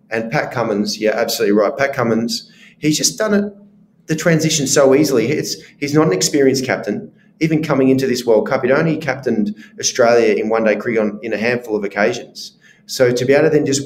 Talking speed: 210 wpm